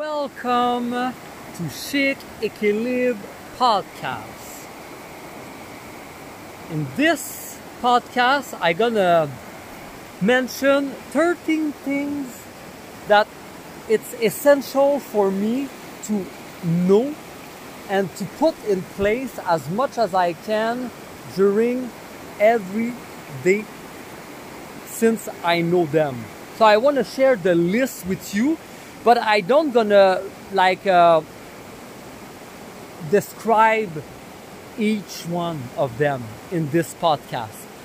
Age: 40-59